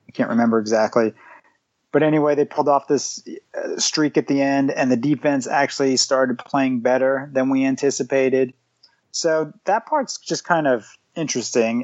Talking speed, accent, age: 155 wpm, American, 30-49